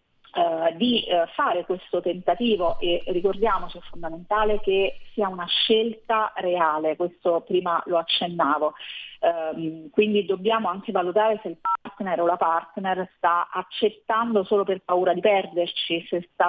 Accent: native